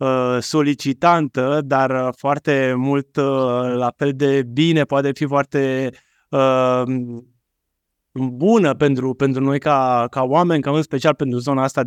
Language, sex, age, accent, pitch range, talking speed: Romanian, male, 20-39, native, 125-150 Hz, 125 wpm